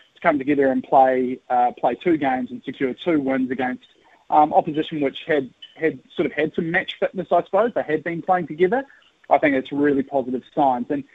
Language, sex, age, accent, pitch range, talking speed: English, male, 30-49, Australian, 135-190 Hz, 205 wpm